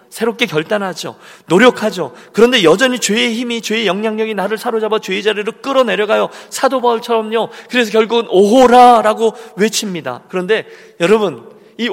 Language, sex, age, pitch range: Korean, male, 40-59, 150-225 Hz